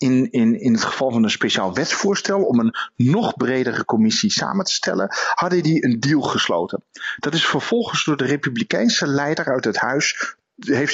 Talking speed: 175 wpm